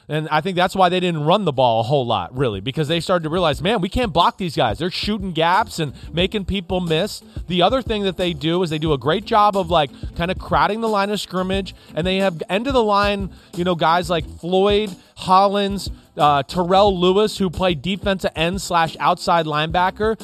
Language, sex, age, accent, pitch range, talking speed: English, male, 30-49, American, 165-200 Hz, 225 wpm